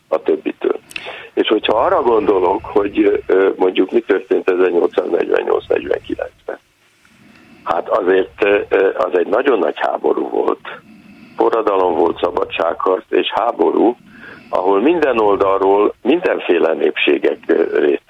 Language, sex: Hungarian, male